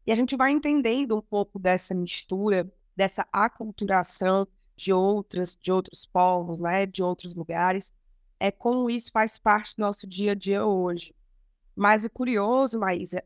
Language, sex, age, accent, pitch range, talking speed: Portuguese, female, 20-39, Brazilian, 185-220 Hz, 160 wpm